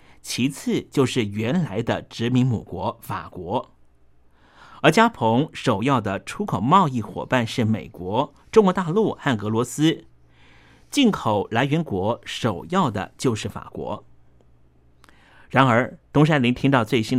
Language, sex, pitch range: Chinese, male, 110-165 Hz